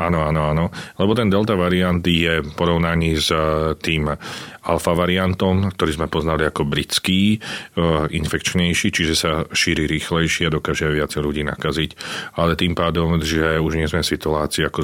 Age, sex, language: 40-59, male, Slovak